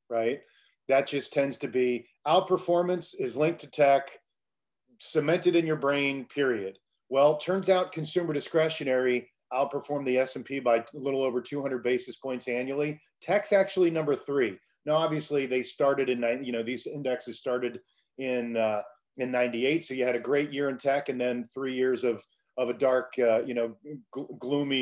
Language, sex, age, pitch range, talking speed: English, male, 40-59, 125-150 Hz, 170 wpm